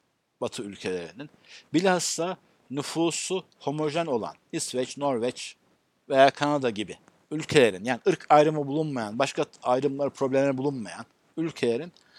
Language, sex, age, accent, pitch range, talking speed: Turkish, male, 60-79, native, 145-190 Hz, 105 wpm